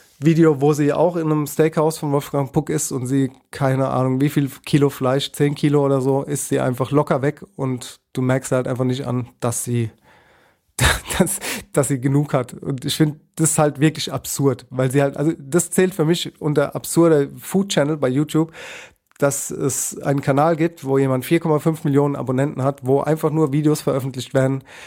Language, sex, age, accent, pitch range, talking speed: German, male, 30-49, German, 135-155 Hz, 195 wpm